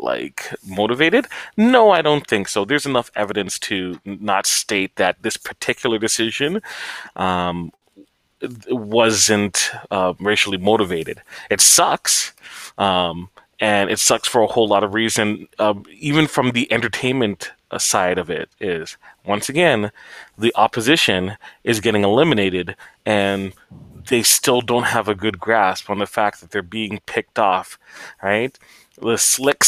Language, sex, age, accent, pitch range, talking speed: English, male, 30-49, American, 100-125 Hz, 140 wpm